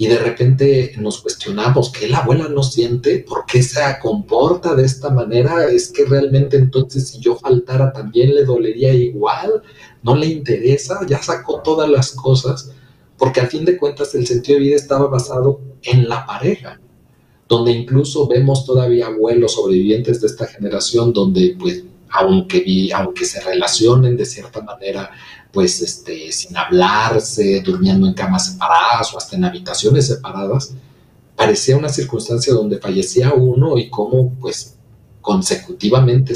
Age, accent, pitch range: 40-59, Mexican, 120-145 Hz